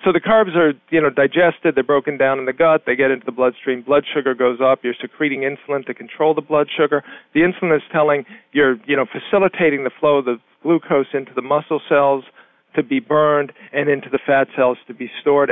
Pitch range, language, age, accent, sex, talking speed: 130-155 Hz, English, 50-69, American, male, 225 wpm